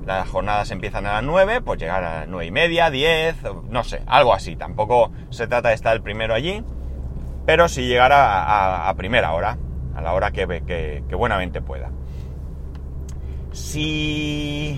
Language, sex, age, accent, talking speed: Spanish, male, 30-49, Spanish, 180 wpm